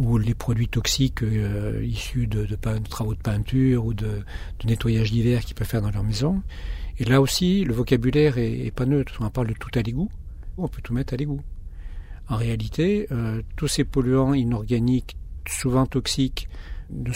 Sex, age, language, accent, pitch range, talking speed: male, 50-69, French, French, 110-130 Hz, 190 wpm